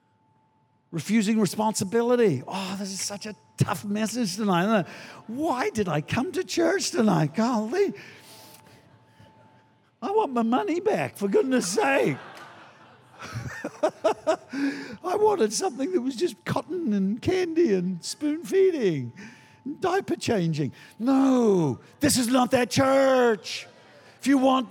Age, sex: 60-79, male